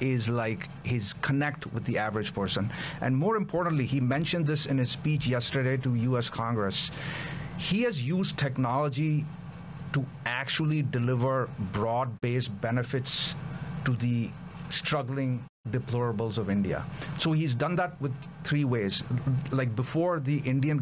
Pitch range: 125-155 Hz